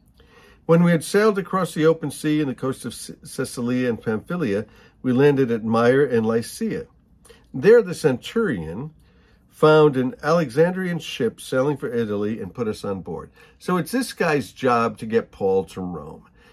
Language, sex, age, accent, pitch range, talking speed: English, male, 50-69, American, 110-160 Hz, 170 wpm